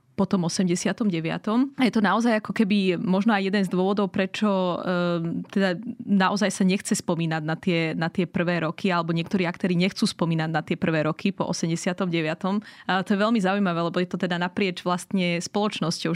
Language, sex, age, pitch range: Slovak, female, 20-39, 175-205 Hz